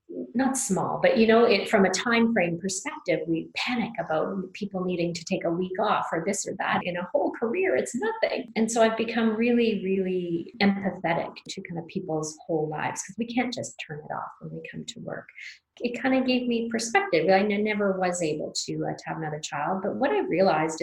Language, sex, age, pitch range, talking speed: English, female, 40-59, 175-230 Hz, 220 wpm